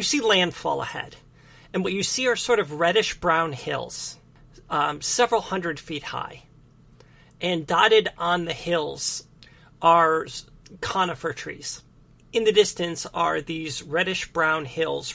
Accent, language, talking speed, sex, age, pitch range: American, English, 130 wpm, male, 40-59, 160-205 Hz